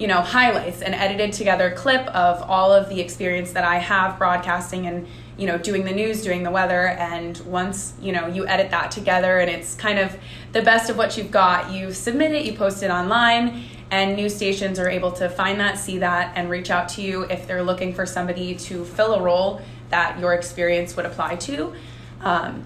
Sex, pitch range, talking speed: female, 175-195 Hz, 215 wpm